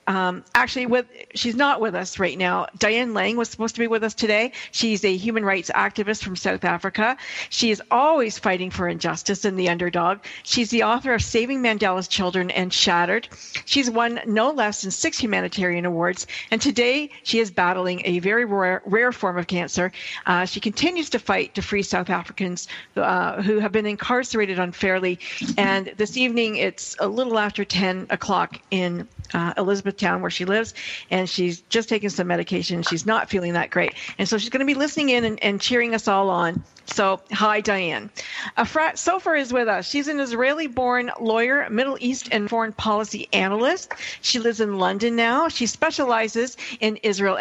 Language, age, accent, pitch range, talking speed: English, 50-69, American, 185-235 Hz, 185 wpm